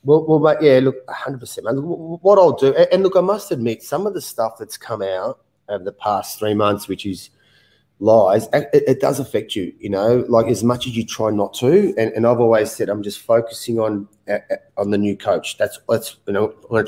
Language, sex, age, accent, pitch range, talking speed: English, male, 30-49, Australian, 105-125 Hz, 240 wpm